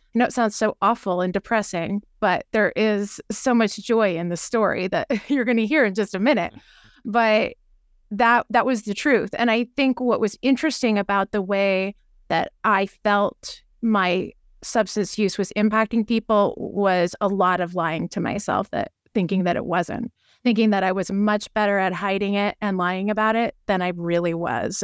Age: 30-49